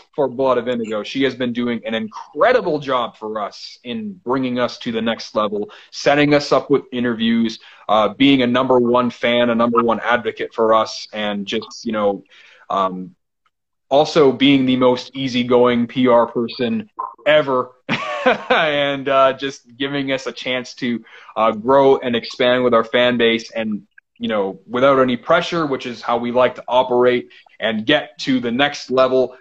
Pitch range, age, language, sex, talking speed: 120-150 Hz, 30-49, English, male, 175 wpm